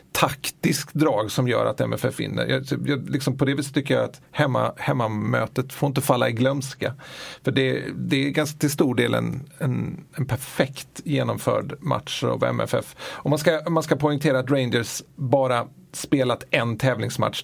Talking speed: 175 wpm